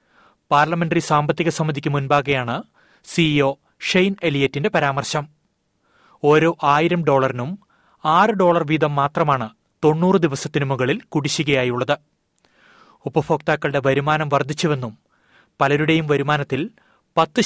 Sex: male